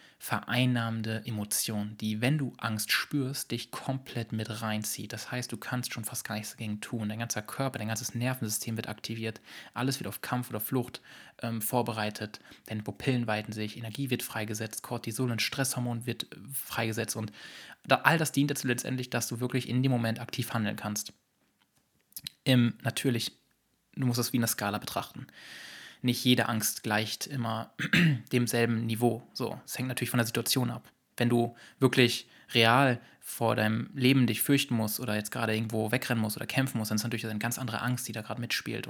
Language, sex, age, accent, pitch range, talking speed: German, male, 20-39, German, 110-125 Hz, 185 wpm